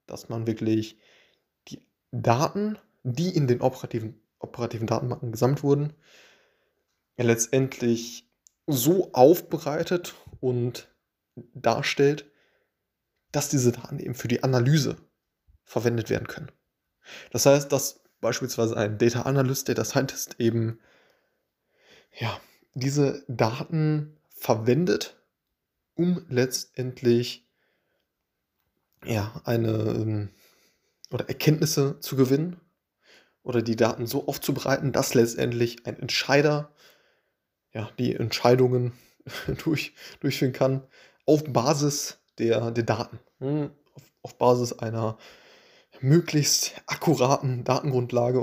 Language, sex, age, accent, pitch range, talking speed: German, male, 20-39, German, 115-145 Hz, 90 wpm